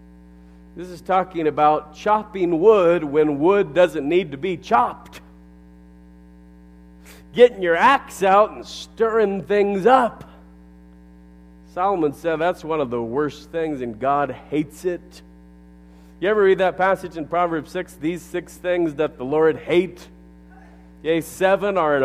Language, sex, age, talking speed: English, male, 40-59, 140 wpm